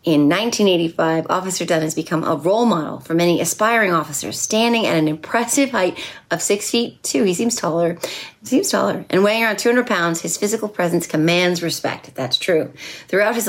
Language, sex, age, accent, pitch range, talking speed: English, female, 30-49, American, 160-205 Hz, 185 wpm